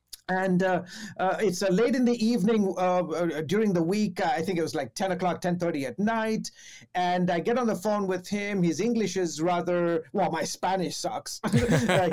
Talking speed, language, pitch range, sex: 200 wpm, English, 180-230 Hz, male